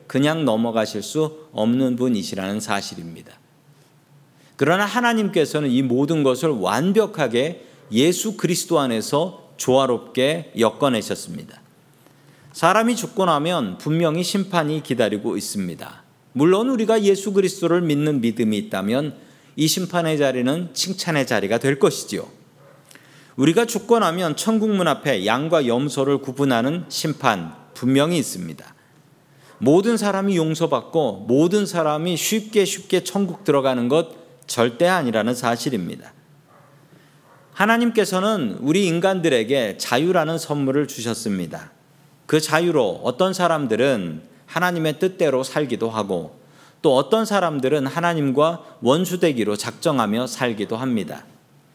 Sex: male